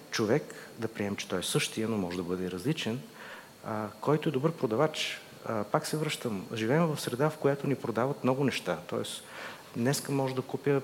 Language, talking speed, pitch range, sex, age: Bulgarian, 195 wpm, 110-135 Hz, male, 50-69